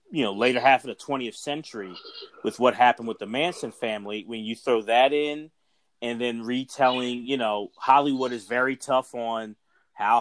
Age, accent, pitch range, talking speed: 30-49, American, 115-135 Hz, 180 wpm